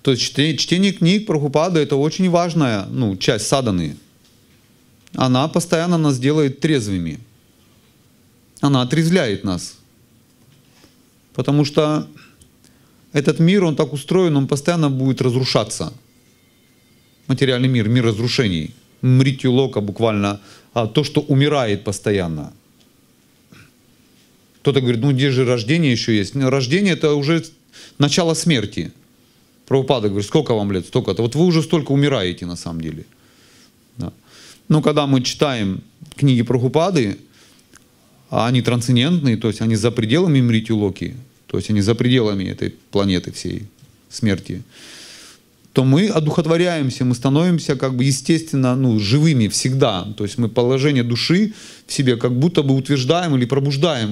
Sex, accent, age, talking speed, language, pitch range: male, native, 30-49, 130 wpm, Russian, 115-150 Hz